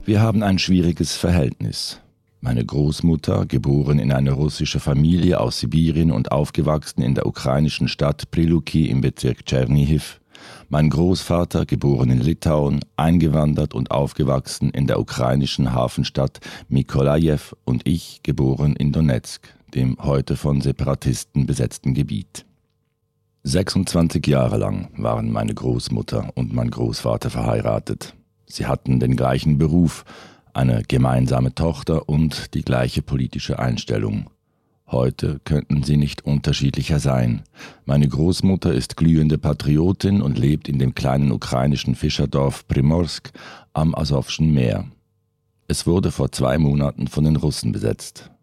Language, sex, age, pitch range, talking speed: German, male, 50-69, 65-80 Hz, 125 wpm